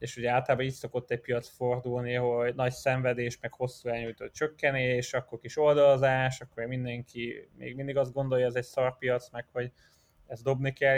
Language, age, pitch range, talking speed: Hungarian, 20-39, 115-130 Hz, 180 wpm